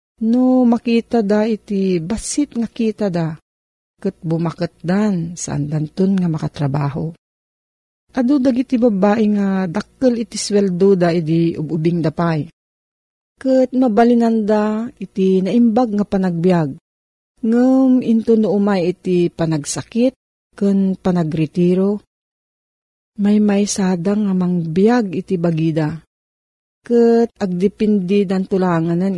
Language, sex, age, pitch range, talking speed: Filipino, female, 40-59, 165-220 Hz, 105 wpm